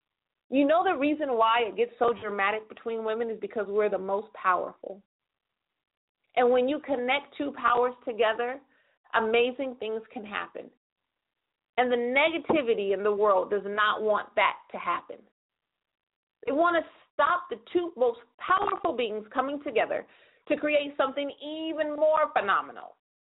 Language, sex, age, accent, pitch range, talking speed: English, female, 40-59, American, 225-340 Hz, 145 wpm